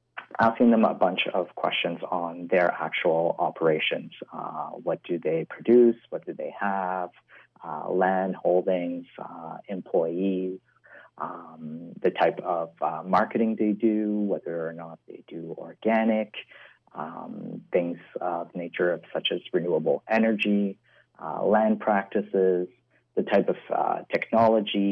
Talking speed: 130 wpm